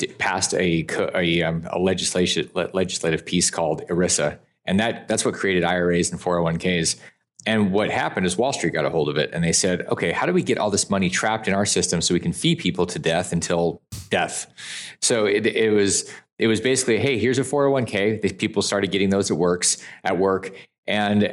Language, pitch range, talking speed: English, 90-110 Hz, 210 wpm